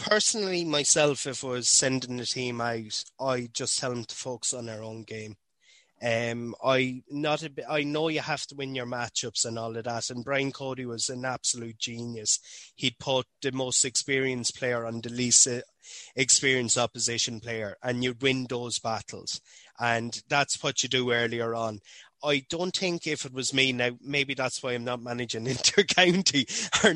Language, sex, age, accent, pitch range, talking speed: English, male, 20-39, Irish, 120-140 Hz, 185 wpm